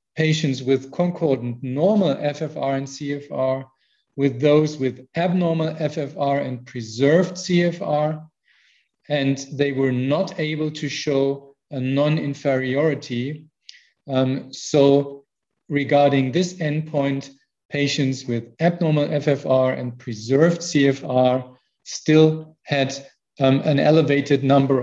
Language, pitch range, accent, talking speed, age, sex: English, 135-155 Hz, German, 100 wpm, 40-59, male